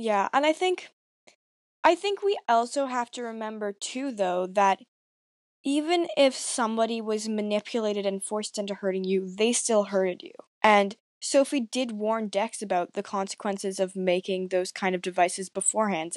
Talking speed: 160 wpm